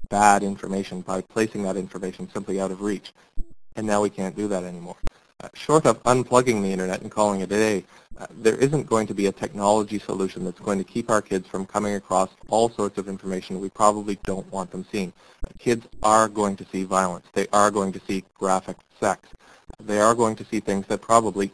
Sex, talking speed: male, 215 wpm